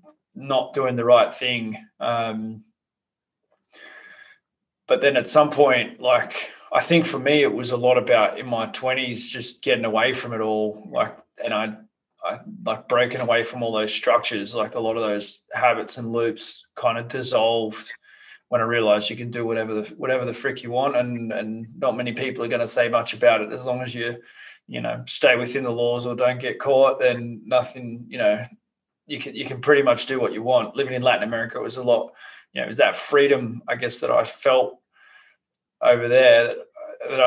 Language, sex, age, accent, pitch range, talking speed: English, male, 20-39, Australian, 115-130 Hz, 205 wpm